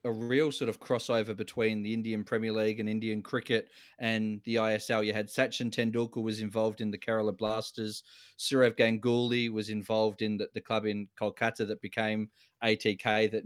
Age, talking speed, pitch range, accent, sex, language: 20-39, 180 wpm, 110-115 Hz, Australian, male, English